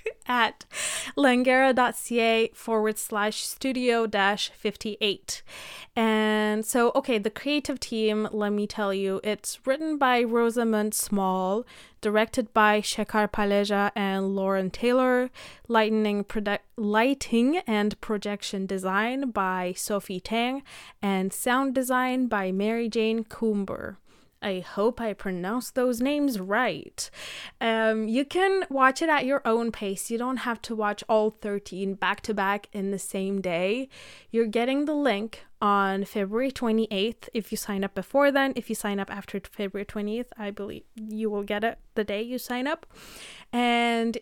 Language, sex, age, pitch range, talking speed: English, female, 20-39, 205-245 Hz, 140 wpm